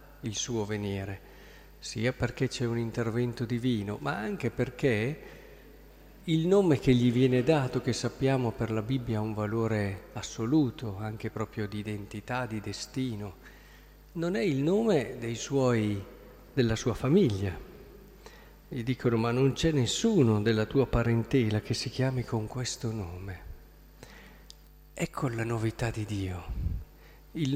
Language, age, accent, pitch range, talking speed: Italian, 50-69, native, 110-140 Hz, 135 wpm